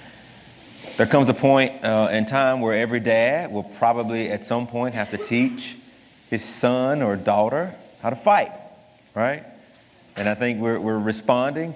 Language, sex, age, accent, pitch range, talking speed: English, male, 30-49, American, 100-120 Hz, 165 wpm